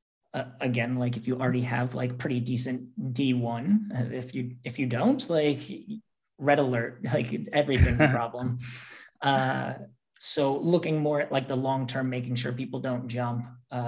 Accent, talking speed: American, 160 wpm